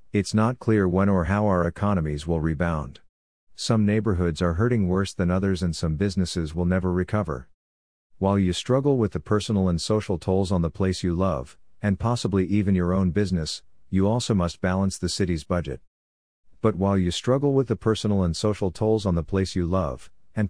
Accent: American